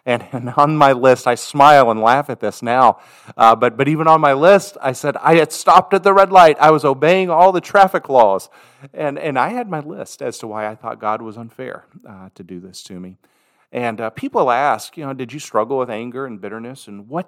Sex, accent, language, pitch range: male, American, English, 110-145 Hz